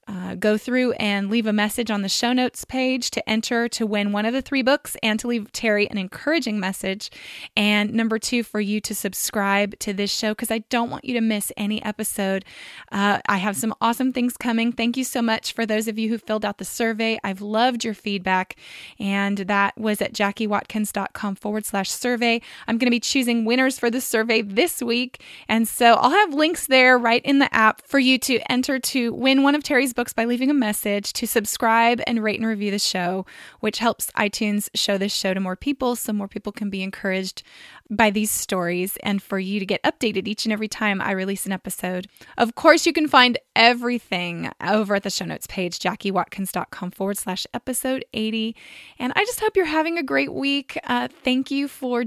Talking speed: 210 wpm